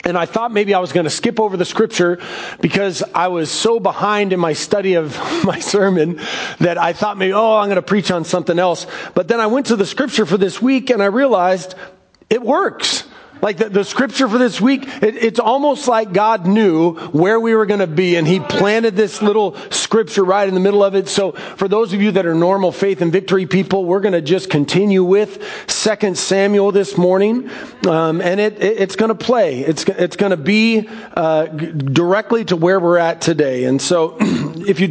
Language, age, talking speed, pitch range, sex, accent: English, 40-59, 220 wpm, 165-205 Hz, male, American